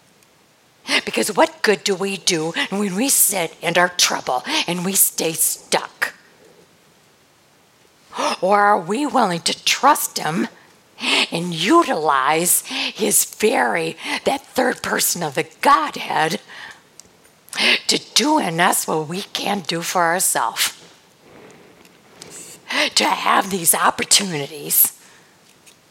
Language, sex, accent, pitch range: English, female, American, 165-235 Hz